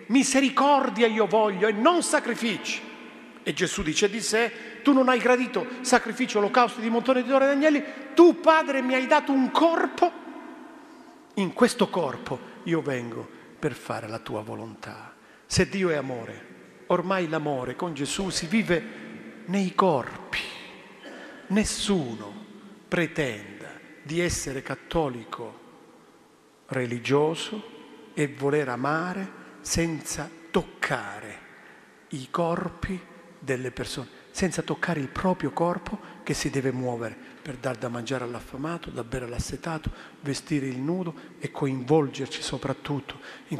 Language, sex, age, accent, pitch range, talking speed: Italian, male, 50-69, native, 130-205 Hz, 125 wpm